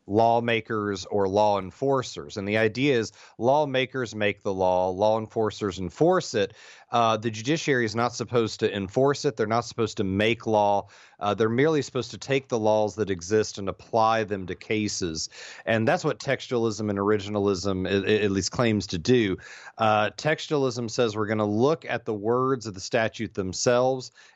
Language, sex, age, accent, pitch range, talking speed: English, male, 30-49, American, 100-120 Hz, 180 wpm